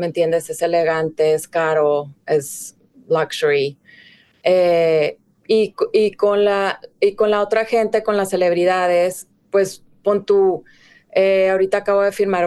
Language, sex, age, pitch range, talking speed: English, female, 30-49, 170-205 Hz, 140 wpm